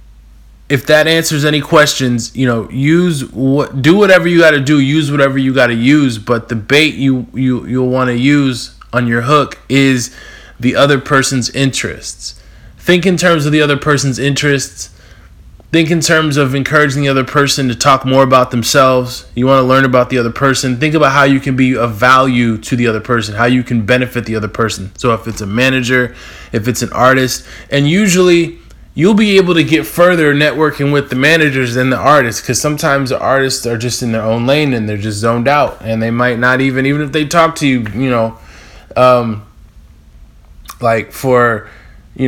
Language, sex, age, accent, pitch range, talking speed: English, male, 20-39, American, 115-145 Hz, 200 wpm